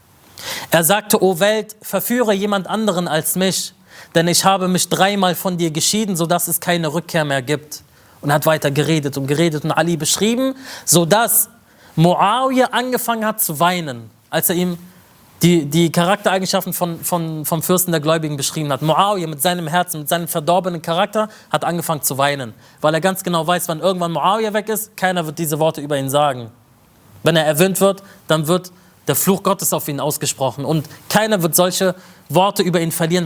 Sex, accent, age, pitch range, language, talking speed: male, German, 30-49, 150-190 Hz, German, 185 wpm